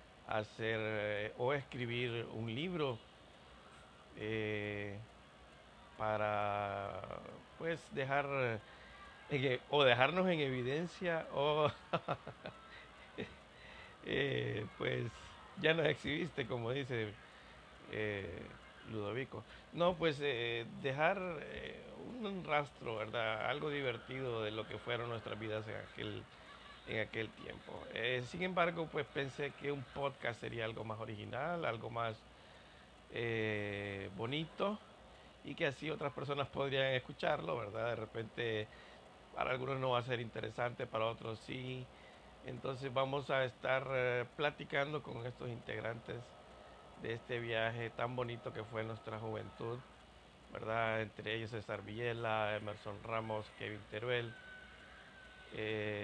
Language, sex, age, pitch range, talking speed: Spanish, male, 50-69, 110-135 Hz, 120 wpm